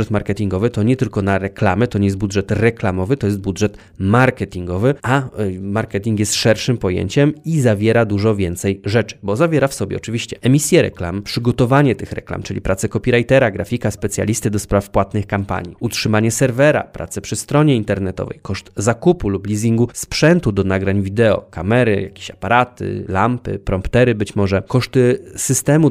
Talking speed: 155 wpm